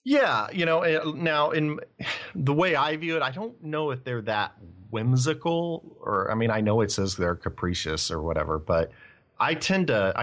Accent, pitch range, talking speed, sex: American, 85-115 Hz, 190 wpm, male